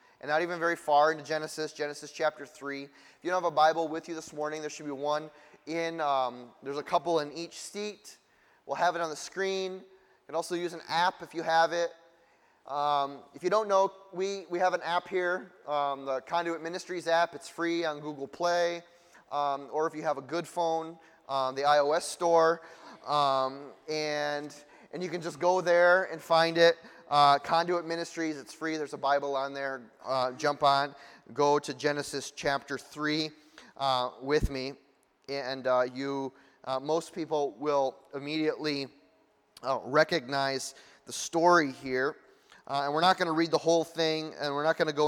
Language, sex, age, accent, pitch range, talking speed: English, male, 20-39, American, 140-165 Hz, 190 wpm